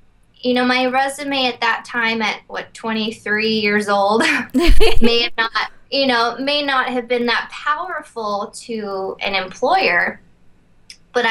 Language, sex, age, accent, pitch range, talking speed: English, female, 10-29, American, 195-240 Hz, 140 wpm